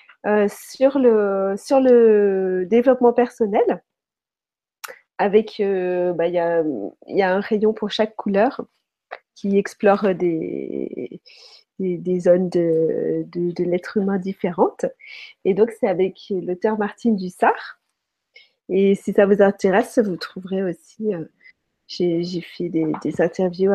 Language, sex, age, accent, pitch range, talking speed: French, female, 30-49, French, 180-225 Hz, 135 wpm